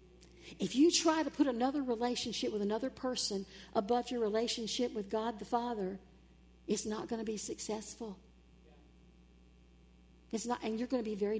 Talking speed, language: 155 wpm, English